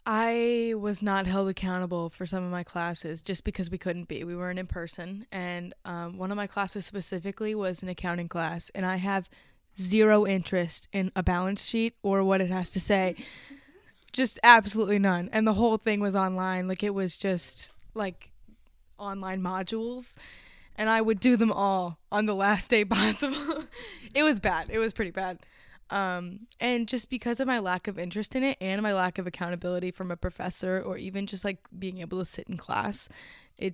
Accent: American